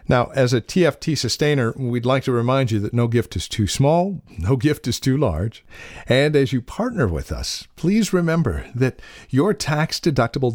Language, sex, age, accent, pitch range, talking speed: English, male, 50-69, American, 105-150 Hz, 180 wpm